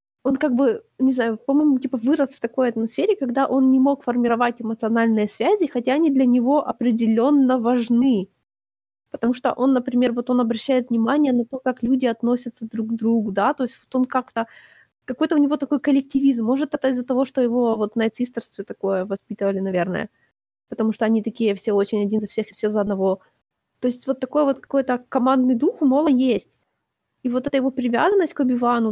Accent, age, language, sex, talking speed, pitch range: native, 20-39, Ukrainian, female, 195 wpm, 225-275 Hz